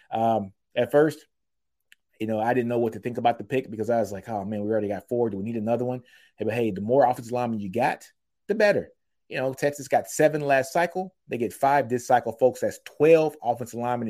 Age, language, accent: 30-49, English, American